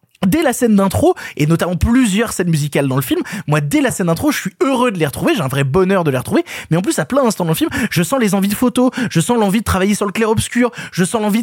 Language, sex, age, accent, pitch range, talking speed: French, male, 20-39, French, 180-260 Hz, 295 wpm